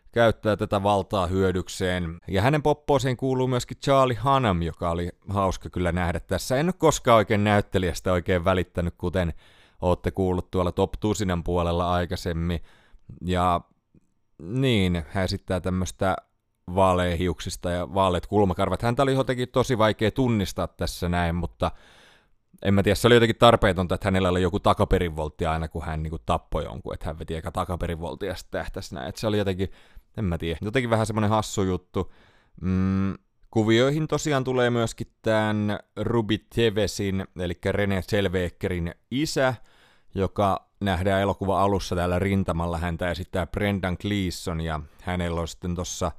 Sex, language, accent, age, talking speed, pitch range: male, Finnish, native, 30-49, 145 wpm, 90-110 Hz